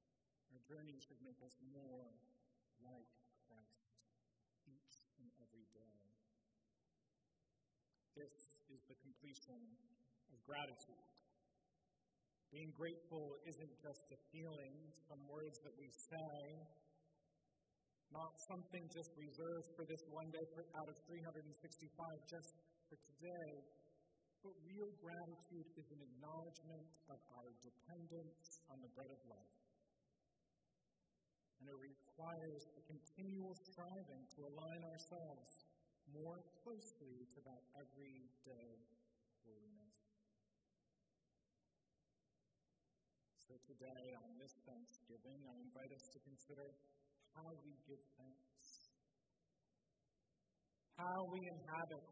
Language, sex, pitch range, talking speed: English, male, 130-165 Hz, 100 wpm